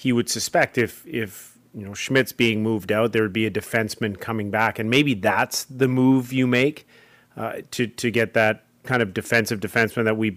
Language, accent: English, American